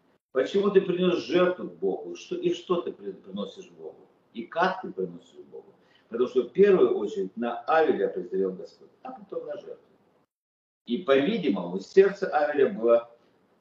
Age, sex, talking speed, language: 50-69, male, 150 wpm, Russian